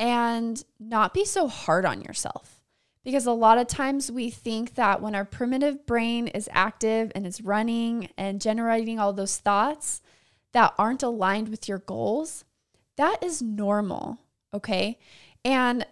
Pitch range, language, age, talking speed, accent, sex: 210-255 Hz, English, 20-39, 150 wpm, American, female